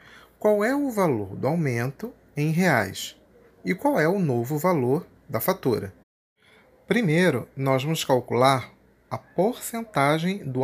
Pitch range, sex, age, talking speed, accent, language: 125-185 Hz, male, 40-59, 130 wpm, Brazilian, Portuguese